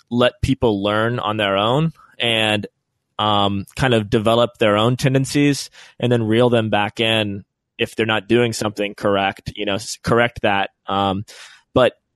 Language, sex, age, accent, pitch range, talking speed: English, male, 20-39, American, 105-125 Hz, 160 wpm